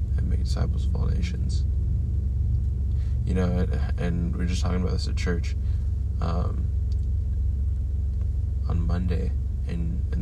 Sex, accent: male, American